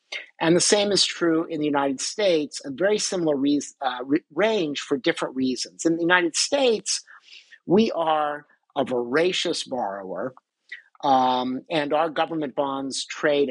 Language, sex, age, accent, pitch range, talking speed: English, male, 50-69, American, 135-165 Hz, 150 wpm